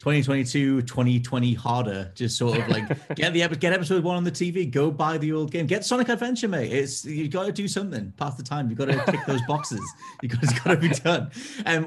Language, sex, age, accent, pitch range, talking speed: English, male, 30-49, British, 105-130 Hz, 235 wpm